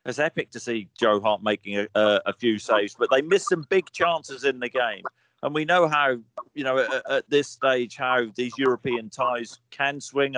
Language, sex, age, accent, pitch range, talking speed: English, male, 40-59, British, 110-130 Hz, 215 wpm